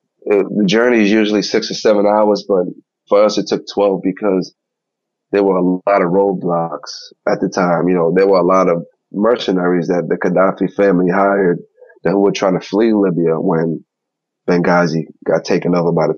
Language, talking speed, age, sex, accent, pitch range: English, 190 wpm, 30-49, male, American, 90-105 Hz